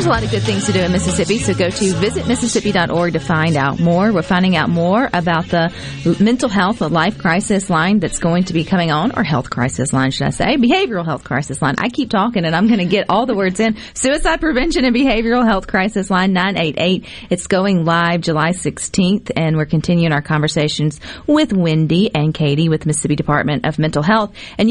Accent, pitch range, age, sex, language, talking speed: American, 155-205 Hz, 40-59, female, English, 215 wpm